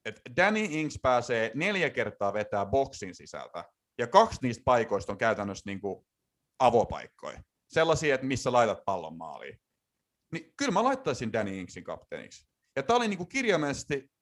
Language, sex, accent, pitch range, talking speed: Finnish, male, native, 115-150 Hz, 150 wpm